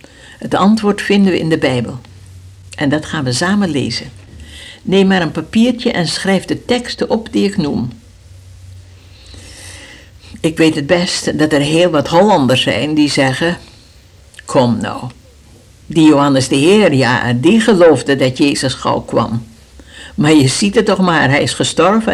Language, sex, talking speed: Dutch, female, 160 wpm